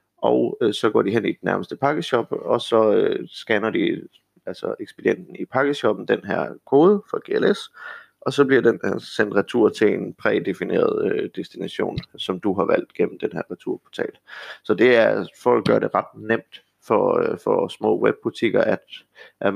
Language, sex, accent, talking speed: Danish, male, native, 180 wpm